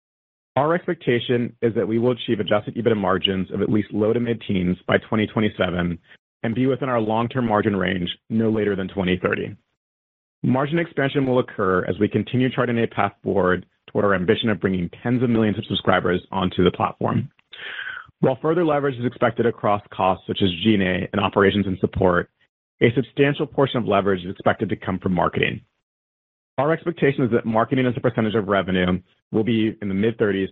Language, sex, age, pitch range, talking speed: English, male, 30-49, 95-125 Hz, 185 wpm